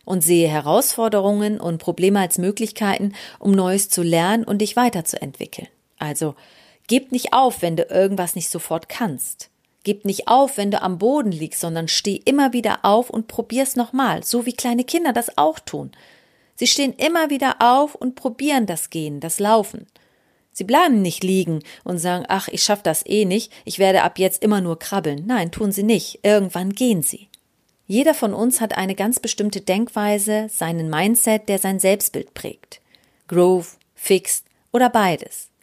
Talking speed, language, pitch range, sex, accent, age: 170 wpm, German, 180-240 Hz, female, German, 40-59